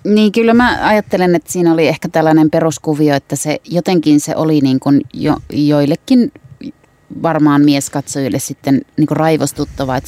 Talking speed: 150 wpm